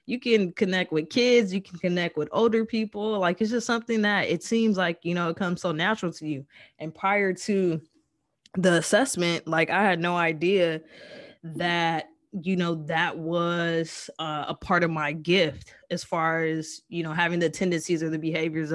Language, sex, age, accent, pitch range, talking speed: English, female, 20-39, American, 160-185 Hz, 190 wpm